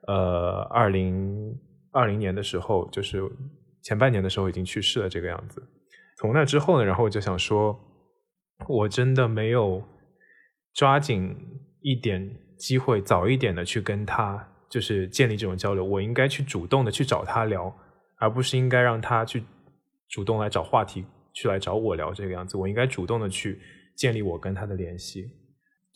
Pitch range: 95-125 Hz